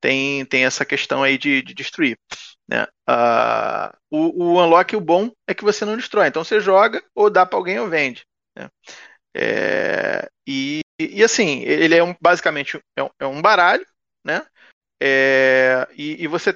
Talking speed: 175 wpm